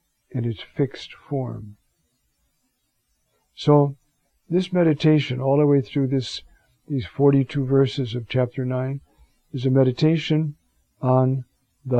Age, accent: 60-79, American